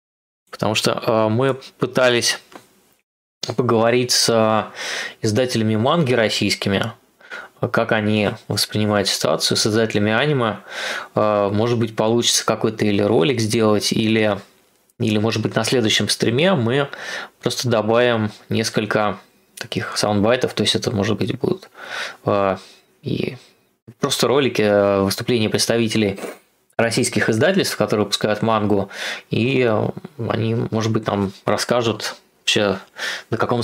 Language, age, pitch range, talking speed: Russian, 20-39, 105-120 Hz, 110 wpm